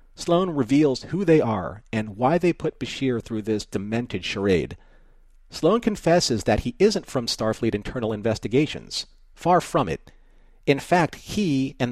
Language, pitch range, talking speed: English, 110-155 Hz, 150 wpm